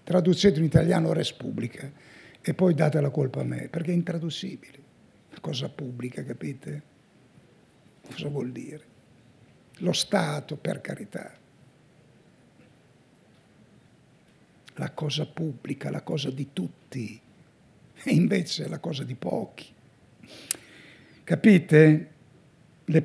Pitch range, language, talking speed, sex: 145-180 Hz, Italian, 105 wpm, male